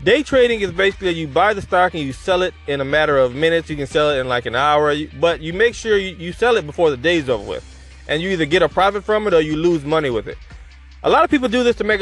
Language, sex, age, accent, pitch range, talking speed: English, male, 20-39, American, 150-200 Hz, 295 wpm